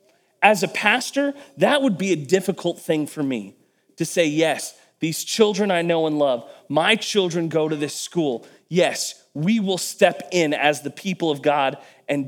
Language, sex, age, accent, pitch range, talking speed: English, male, 30-49, American, 150-195 Hz, 180 wpm